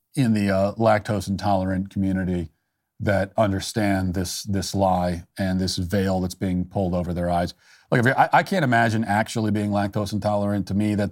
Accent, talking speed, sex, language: American, 180 wpm, male, English